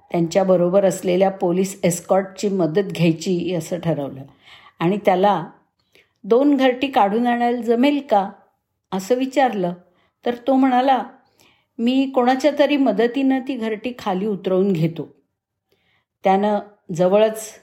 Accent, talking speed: native, 110 wpm